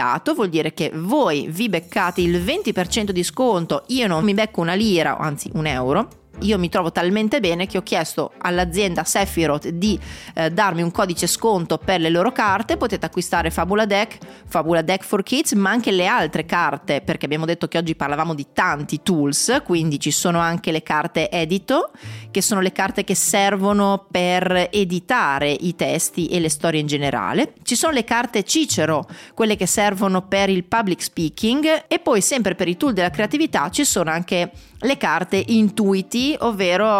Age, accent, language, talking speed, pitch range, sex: 30-49, native, Italian, 180 wpm, 165-210 Hz, female